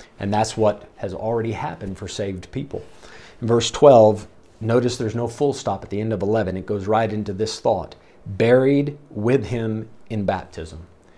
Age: 40-59